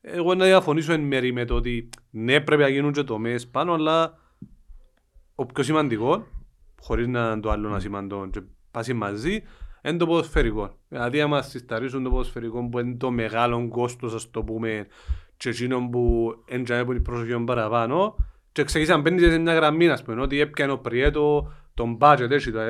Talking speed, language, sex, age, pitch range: 90 wpm, Greek, male, 30-49, 115-150 Hz